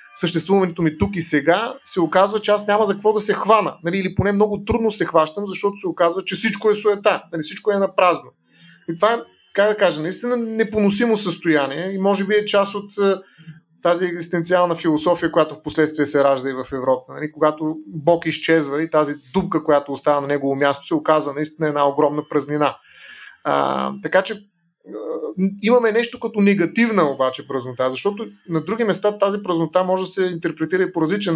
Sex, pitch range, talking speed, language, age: male, 150-190 Hz, 190 wpm, Bulgarian, 30-49